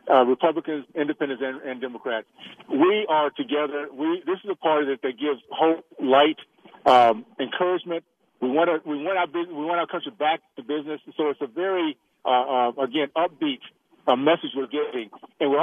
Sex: male